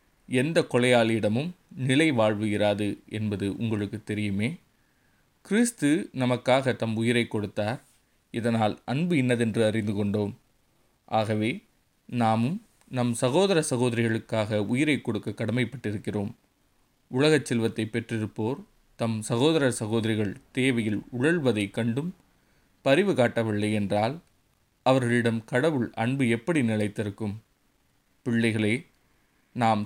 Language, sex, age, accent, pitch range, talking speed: Tamil, male, 20-39, native, 110-130 Hz, 85 wpm